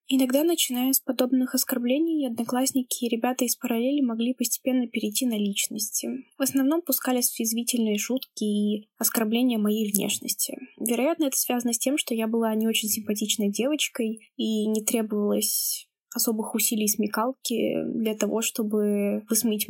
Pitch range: 225-260 Hz